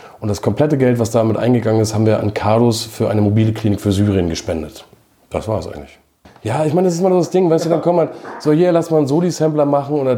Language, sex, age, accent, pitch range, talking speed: German, male, 40-59, German, 115-145 Hz, 275 wpm